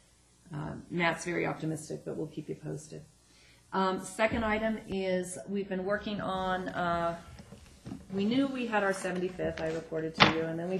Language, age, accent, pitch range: English, 40-59, American, 165-190 Hz